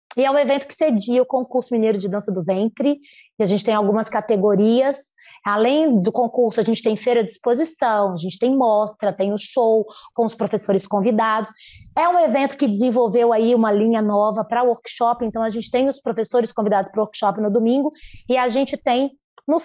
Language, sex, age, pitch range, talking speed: Portuguese, female, 20-39, 215-260 Hz, 210 wpm